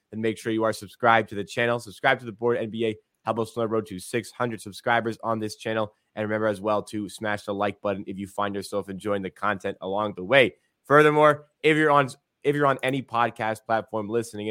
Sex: male